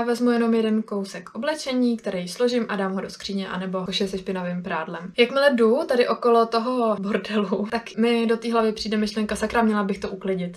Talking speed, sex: 205 wpm, female